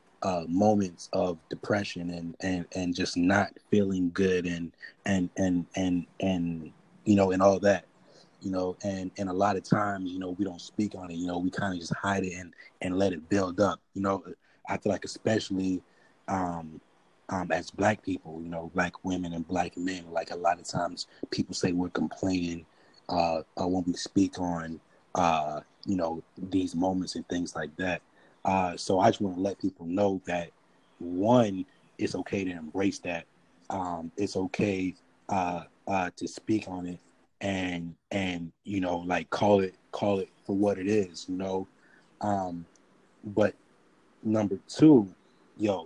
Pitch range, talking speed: 90-100 Hz, 180 wpm